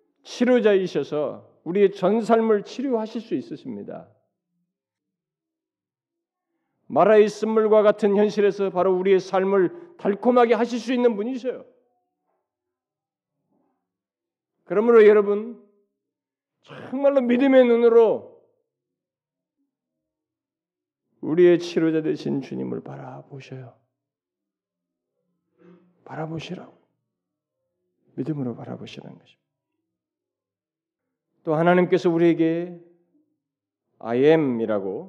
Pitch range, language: 130-210 Hz, Korean